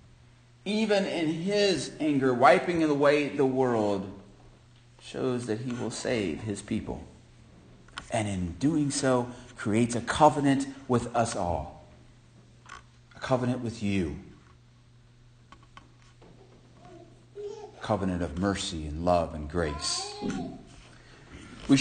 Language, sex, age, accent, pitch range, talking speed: English, male, 40-59, American, 110-170 Hz, 105 wpm